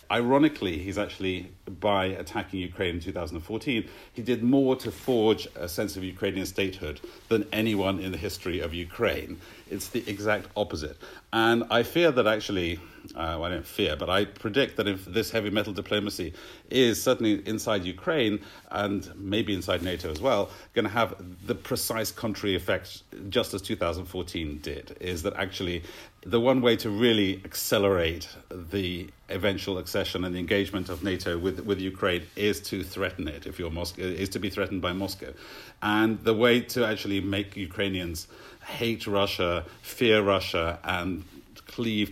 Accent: British